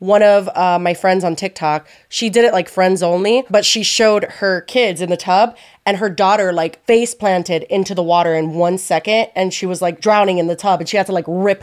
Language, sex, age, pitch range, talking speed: English, female, 20-39, 175-220 Hz, 240 wpm